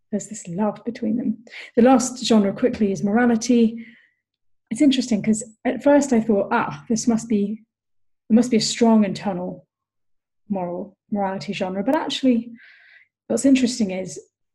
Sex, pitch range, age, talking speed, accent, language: female, 195-225 Hz, 30-49, 150 wpm, British, English